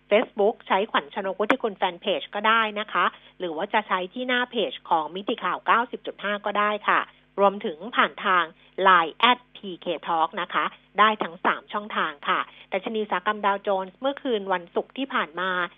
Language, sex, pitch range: Thai, female, 185-240 Hz